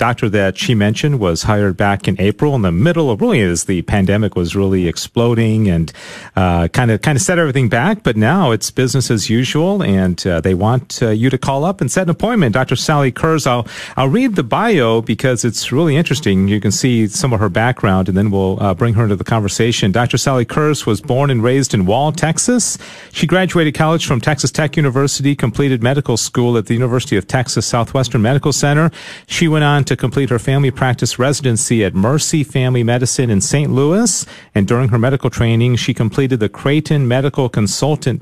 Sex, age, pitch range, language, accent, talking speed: male, 40-59, 110-140 Hz, English, American, 205 wpm